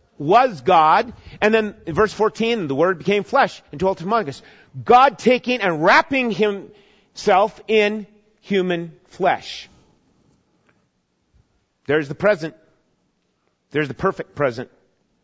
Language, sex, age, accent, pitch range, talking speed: English, male, 40-59, American, 140-215 Hz, 120 wpm